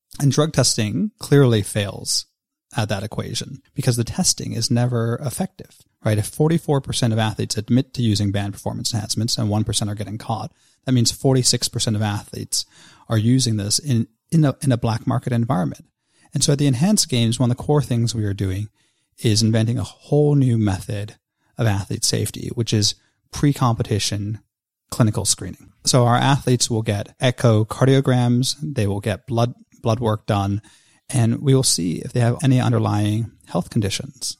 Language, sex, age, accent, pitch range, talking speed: English, male, 30-49, American, 105-130 Hz, 170 wpm